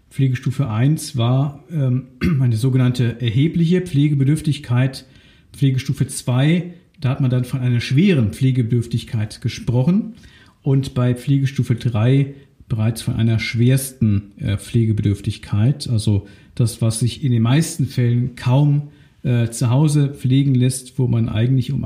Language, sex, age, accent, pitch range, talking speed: German, male, 50-69, German, 120-145 Hz, 120 wpm